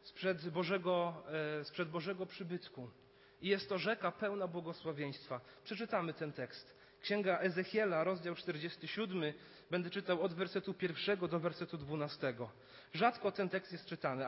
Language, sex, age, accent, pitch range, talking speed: Polish, male, 40-59, native, 145-185 Hz, 125 wpm